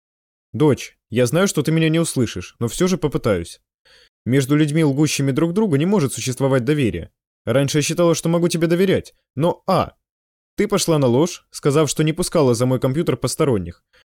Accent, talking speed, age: native, 180 wpm, 20-39